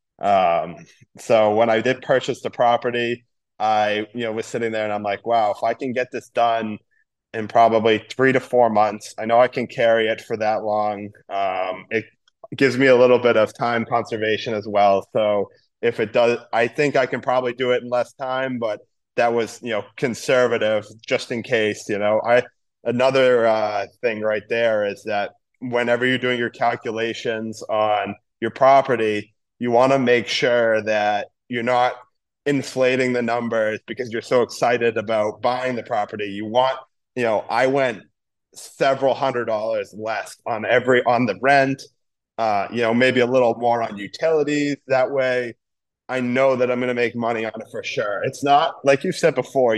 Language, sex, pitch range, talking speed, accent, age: English, male, 110-130 Hz, 185 wpm, American, 20-39